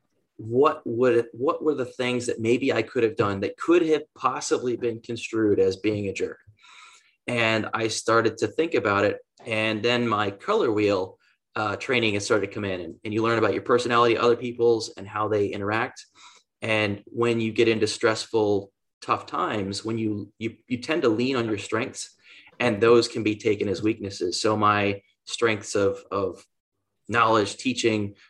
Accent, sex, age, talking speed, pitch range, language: American, male, 20-39, 180 wpm, 105-120 Hz, English